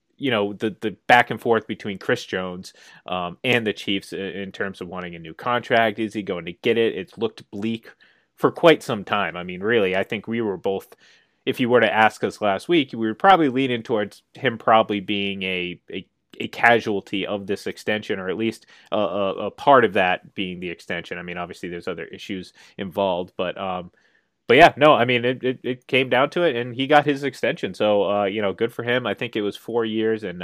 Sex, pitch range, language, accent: male, 95-130 Hz, English, American